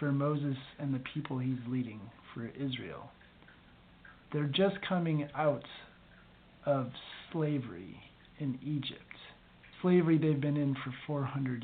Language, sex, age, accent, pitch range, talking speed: English, male, 40-59, American, 135-175 Hz, 120 wpm